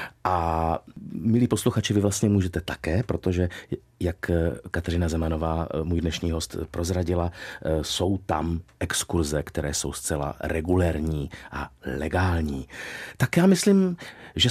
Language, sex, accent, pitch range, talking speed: Czech, male, native, 80-100 Hz, 115 wpm